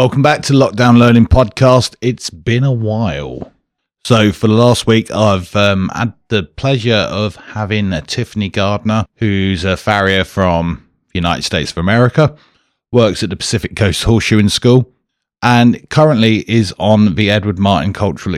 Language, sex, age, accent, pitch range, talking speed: English, male, 30-49, British, 95-115 Hz, 160 wpm